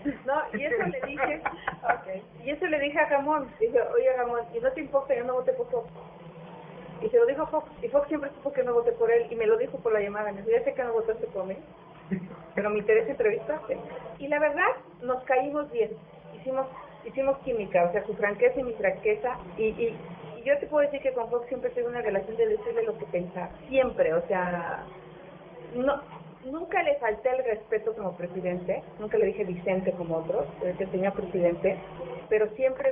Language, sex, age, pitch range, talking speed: Spanish, female, 40-59, 185-275 Hz, 210 wpm